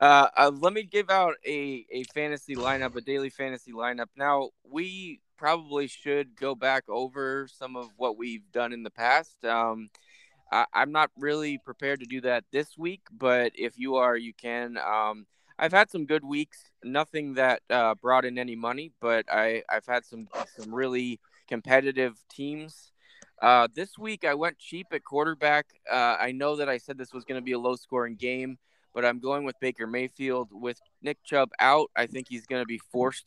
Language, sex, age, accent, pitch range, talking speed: English, male, 20-39, American, 115-140 Hz, 190 wpm